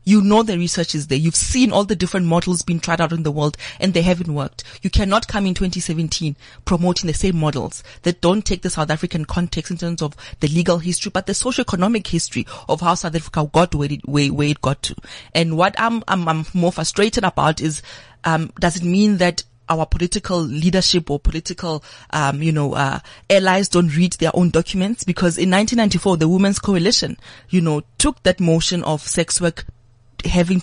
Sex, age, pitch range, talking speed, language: female, 30-49, 155-190 Hz, 200 wpm, English